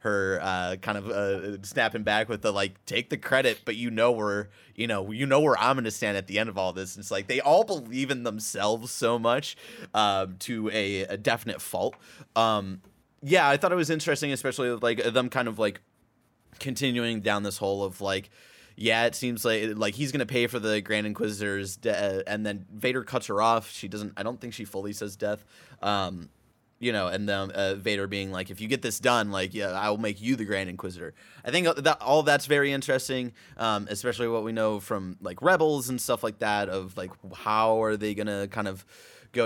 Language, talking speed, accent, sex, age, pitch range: English, 220 wpm, American, male, 30-49, 100-120 Hz